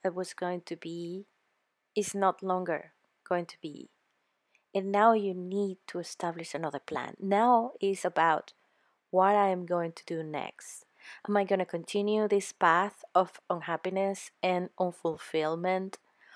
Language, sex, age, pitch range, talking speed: English, female, 20-39, 175-215 Hz, 145 wpm